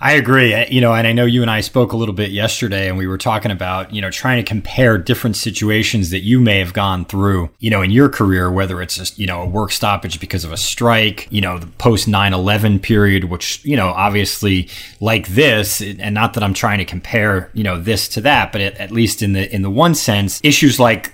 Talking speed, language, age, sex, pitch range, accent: 245 wpm, English, 30-49, male, 100-120 Hz, American